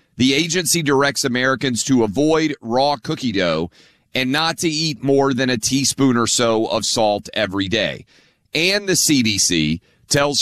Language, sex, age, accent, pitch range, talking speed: English, male, 30-49, American, 110-150 Hz, 155 wpm